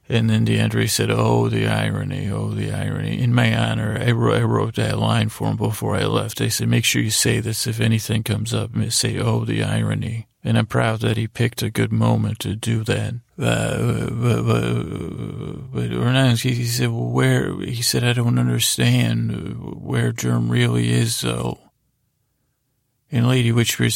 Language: English